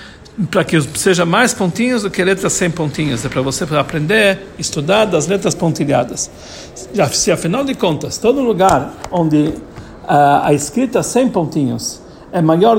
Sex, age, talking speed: male, 60-79, 150 wpm